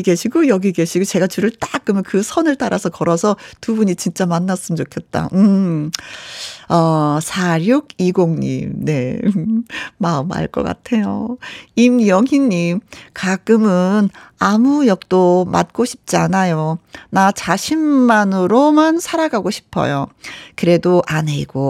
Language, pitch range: Korean, 180-240 Hz